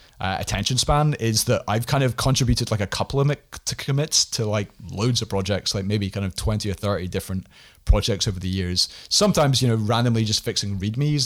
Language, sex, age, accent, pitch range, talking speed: English, male, 30-49, British, 105-135 Hz, 205 wpm